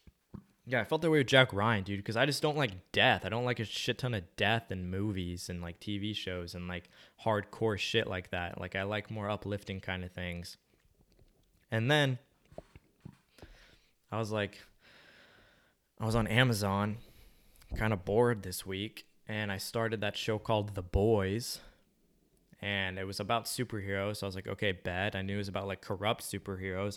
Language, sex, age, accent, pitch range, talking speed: English, male, 20-39, American, 95-115 Hz, 185 wpm